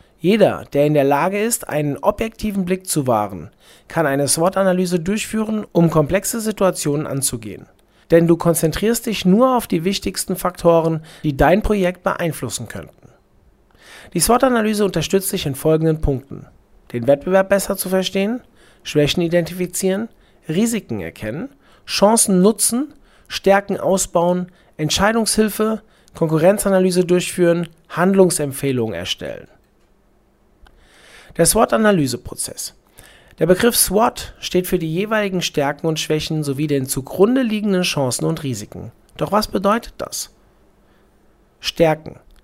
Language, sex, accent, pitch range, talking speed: German, male, German, 150-200 Hz, 115 wpm